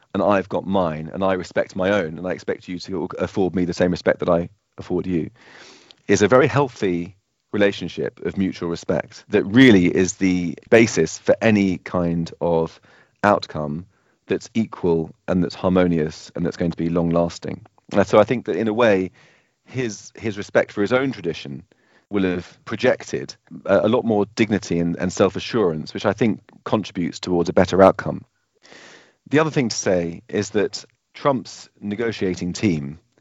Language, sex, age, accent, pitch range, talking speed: English, male, 30-49, British, 85-105 Hz, 175 wpm